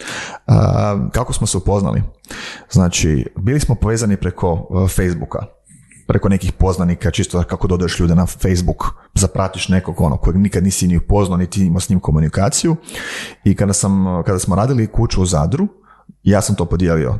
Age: 30-49